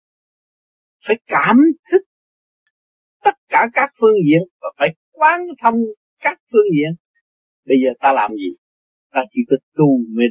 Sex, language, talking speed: male, Vietnamese, 145 wpm